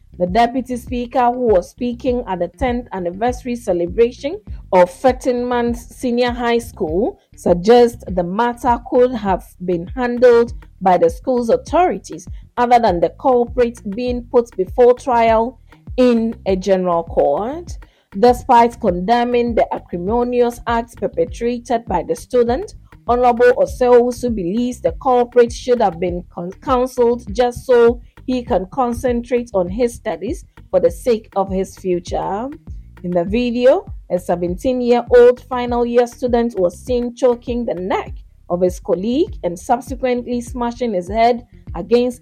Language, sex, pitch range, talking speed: English, female, 195-245 Hz, 135 wpm